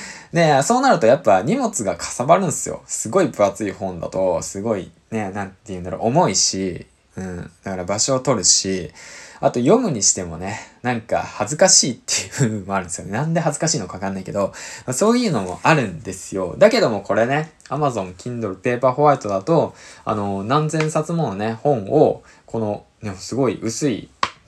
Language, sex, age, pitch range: Japanese, male, 20-39, 100-155 Hz